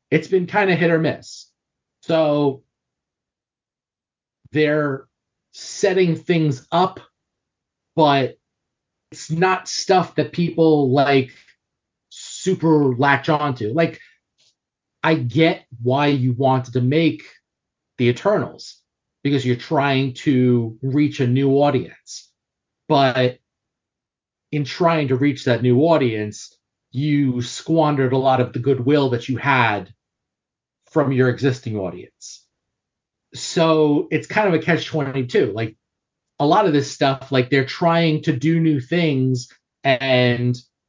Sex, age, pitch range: male, 30-49, 130-160 Hz